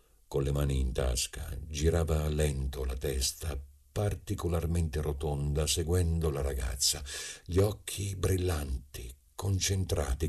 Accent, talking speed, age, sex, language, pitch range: native, 105 wpm, 50-69, male, Italian, 75-95 Hz